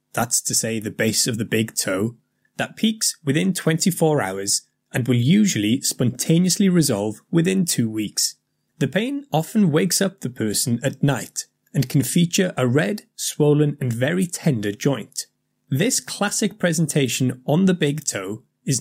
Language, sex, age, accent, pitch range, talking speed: English, male, 30-49, British, 125-170 Hz, 155 wpm